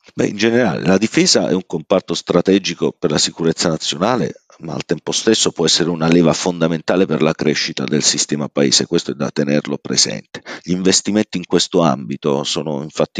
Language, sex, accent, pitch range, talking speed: Italian, male, native, 80-95 Hz, 175 wpm